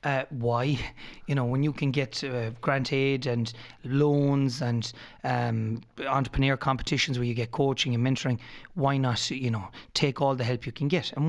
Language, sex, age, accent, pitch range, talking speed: English, male, 30-49, Irish, 120-145 Hz, 185 wpm